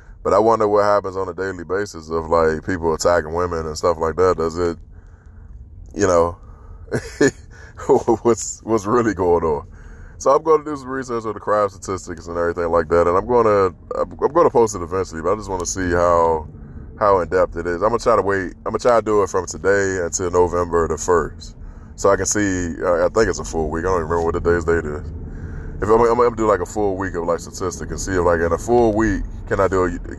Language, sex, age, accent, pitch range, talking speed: English, male, 20-39, American, 85-105 Hz, 255 wpm